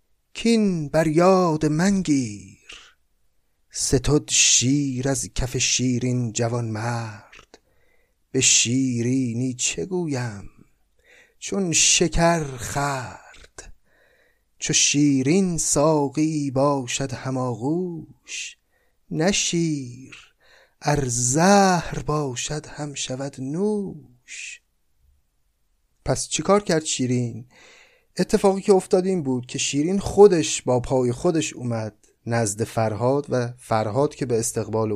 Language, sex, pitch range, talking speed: Persian, male, 120-160 Hz, 90 wpm